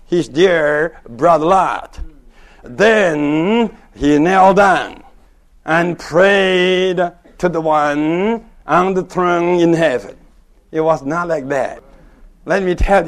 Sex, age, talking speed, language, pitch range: male, 60-79, 120 wpm, English, 155-195 Hz